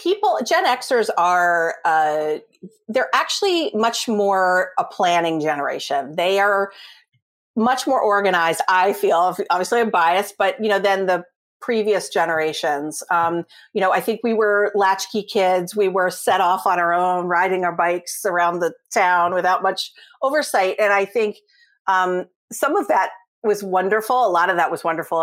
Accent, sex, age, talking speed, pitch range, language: American, female, 50-69, 165 wpm, 175-225 Hz, English